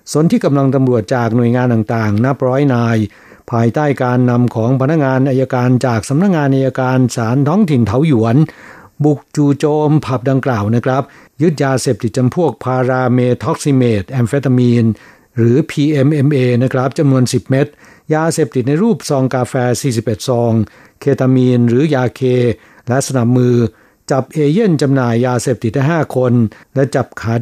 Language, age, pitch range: Thai, 60-79, 120-145 Hz